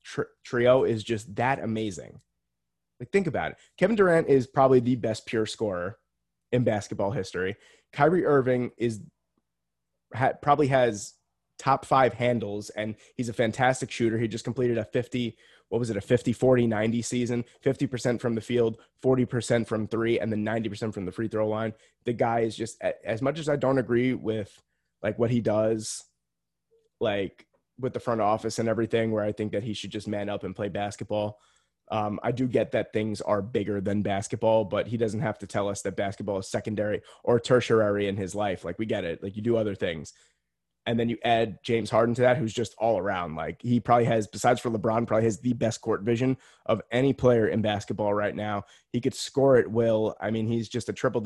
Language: English